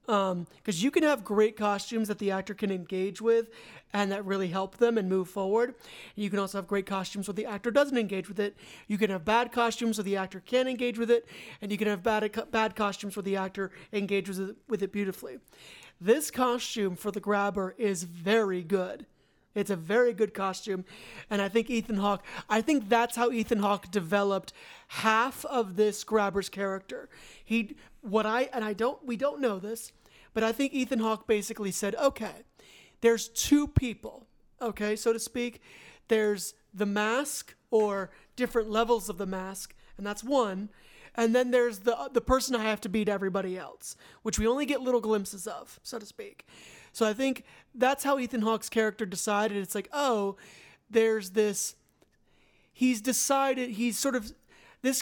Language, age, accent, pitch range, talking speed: English, 40-59, American, 200-235 Hz, 185 wpm